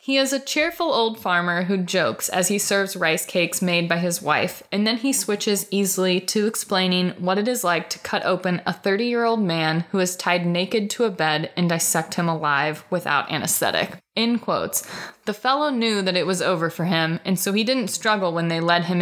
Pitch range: 165-200 Hz